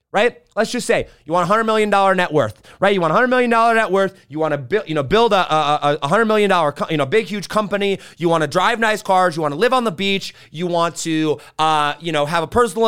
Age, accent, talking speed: 30-49, American, 280 wpm